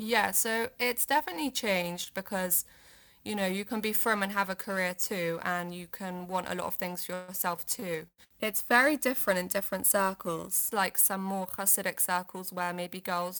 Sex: female